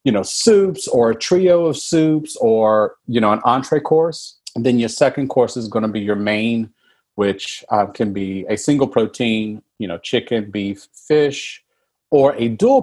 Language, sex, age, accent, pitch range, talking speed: English, male, 40-59, American, 110-150 Hz, 185 wpm